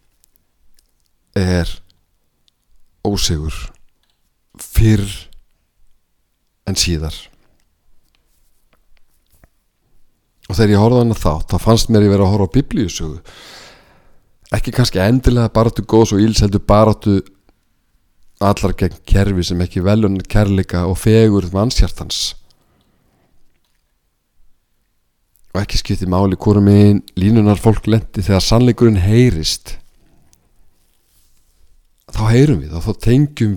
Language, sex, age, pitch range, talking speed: English, male, 50-69, 85-105 Hz, 100 wpm